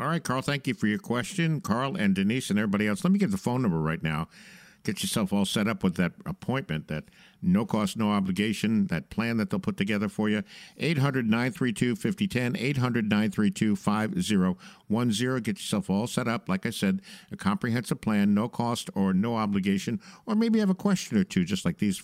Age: 60-79